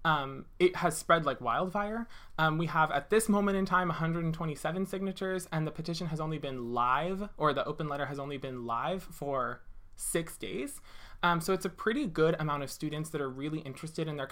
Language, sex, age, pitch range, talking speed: English, male, 20-39, 135-175 Hz, 205 wpm